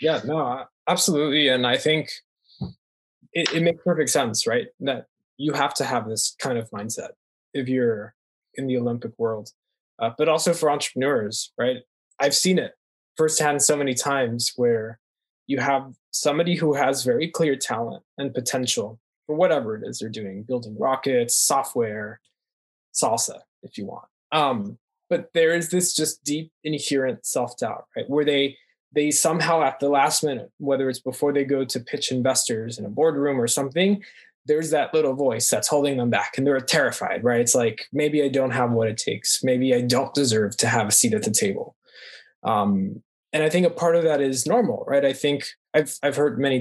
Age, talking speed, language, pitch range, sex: 20-39, 185 wpm, English, 125-155 Hz, male